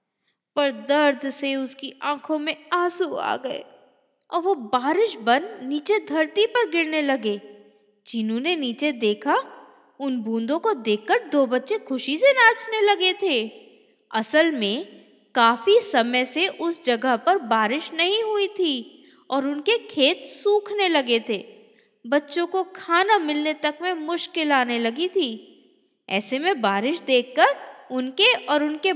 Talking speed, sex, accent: 140 wpm, female, native